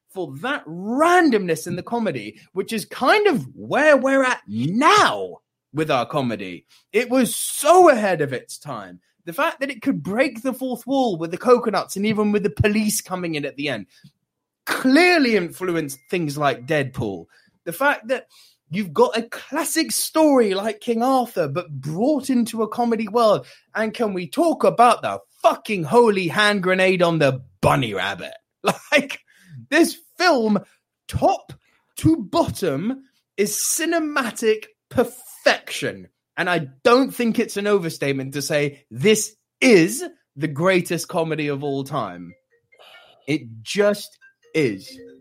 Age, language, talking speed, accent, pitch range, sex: 20-39, English, 145 wpm, British, 170-270 Hz, male